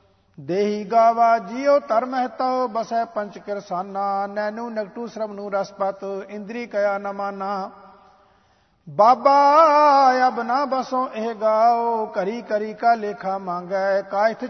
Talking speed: 105 wpm